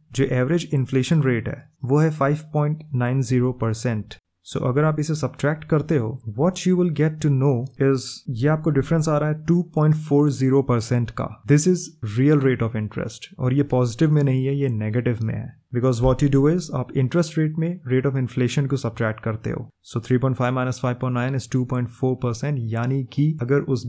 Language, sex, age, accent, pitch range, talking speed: Hindi, male, 20-39, native, 125-150 Hz, 185 wpm